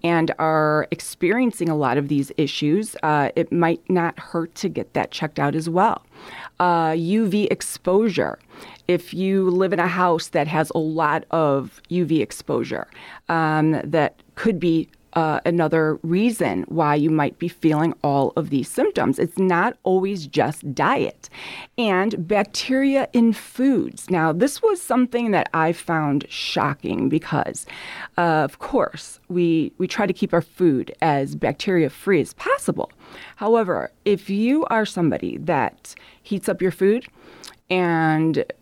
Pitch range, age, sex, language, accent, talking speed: 160-215 Hz, 30-49, female, English, American, 150 wpm